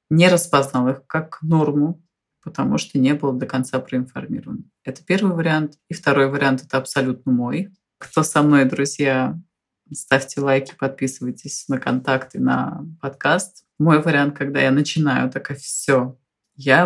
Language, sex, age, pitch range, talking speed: Russian, female, 30-49, 130-165 Hz, 145 wpm